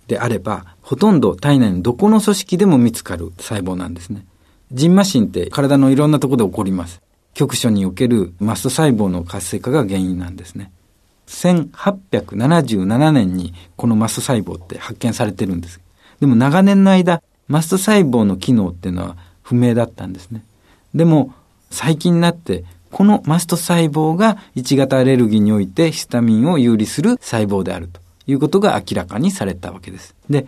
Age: 50-69